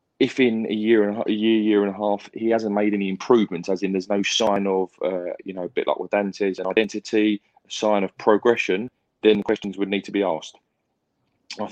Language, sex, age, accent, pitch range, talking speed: English, male, 20-39, British, 95-110 Hz, 225 wpm